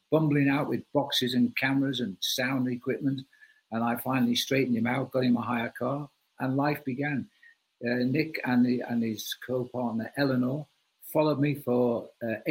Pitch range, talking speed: 115-145 Hz, 170 wpm